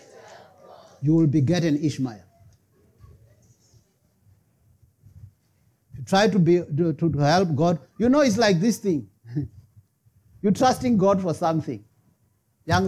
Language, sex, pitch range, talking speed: English, male, 115-180 Hz, 110 wpm